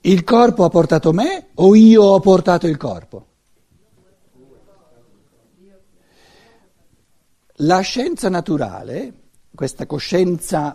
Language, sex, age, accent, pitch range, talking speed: Italian, male, 60-79, native, 160-215 Hz, 90 wpm